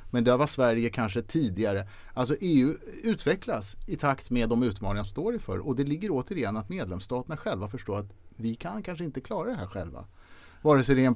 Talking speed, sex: 210 wpm, male